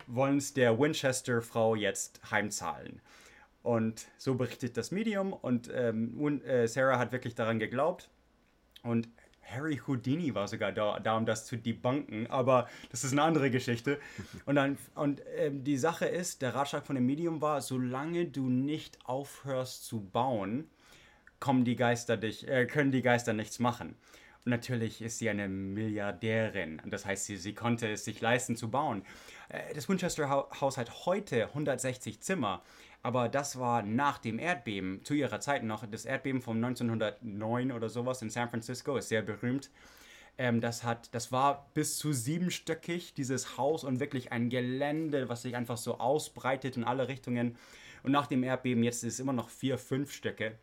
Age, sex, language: 30-49, male, English